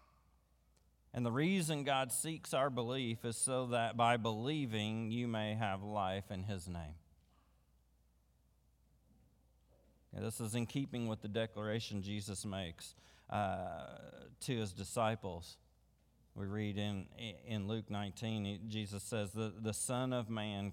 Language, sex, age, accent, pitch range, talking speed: English, male, 40-59, American, 100-145 Hz, 130 wpm